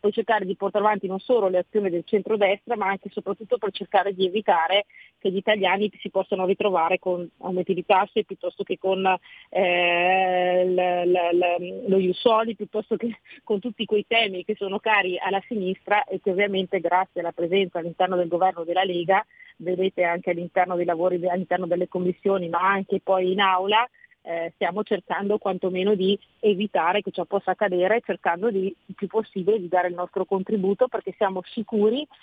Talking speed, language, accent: 175 wpm, Italian, native